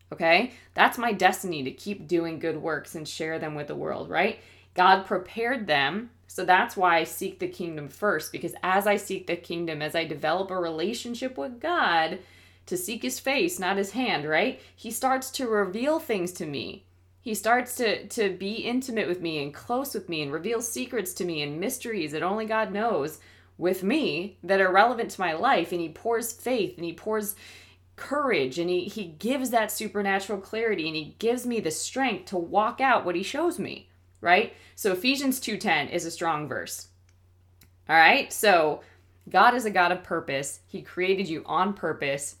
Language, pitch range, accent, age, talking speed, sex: English, 155-215 Hz, American, 20-39, 190 wpm, female